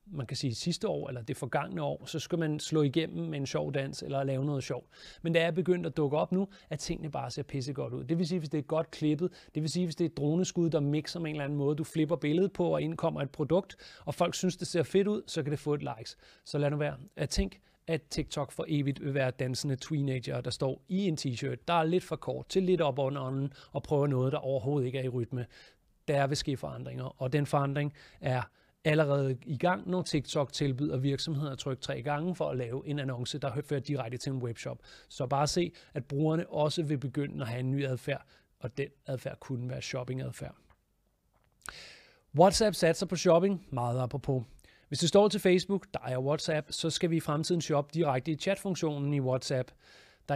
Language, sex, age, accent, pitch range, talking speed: Danish, male, 30-49, native, 135-165 Hz, 235 wpm